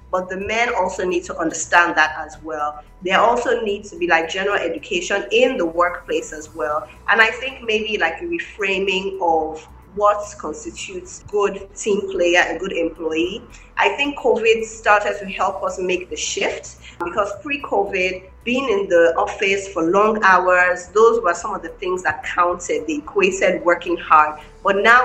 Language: English